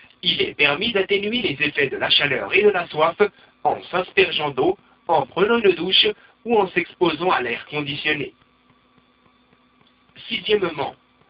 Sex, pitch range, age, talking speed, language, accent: male, 155-240 Hz, 60-79, 145 wpm, French, French